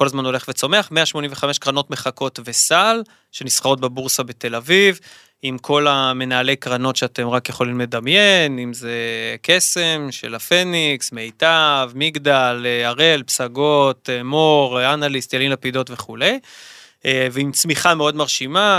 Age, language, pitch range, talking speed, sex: 20-39, Hebrew, 125-160 Hz, 120 wpm, male